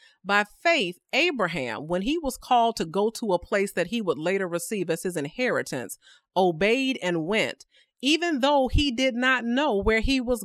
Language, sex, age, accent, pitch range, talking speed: English, female, 40-59, American, 185-245 Hz, 185 wpm